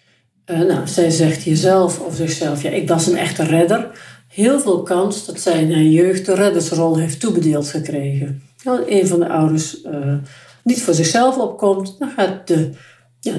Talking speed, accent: 185 wpm, Dutch